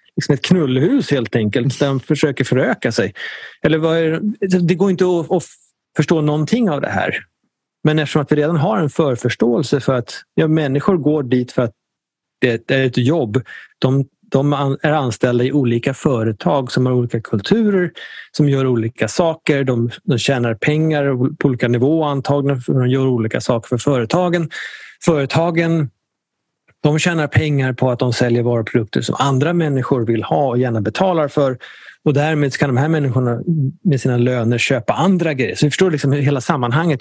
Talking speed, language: 175 wpm, Swedish